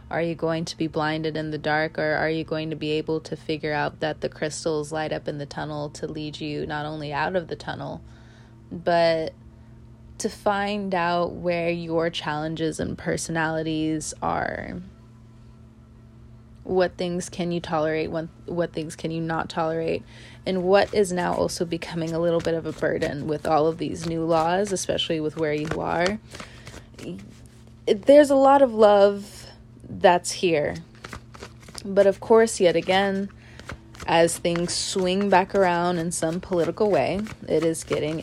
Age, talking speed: 20-39, 165 wpm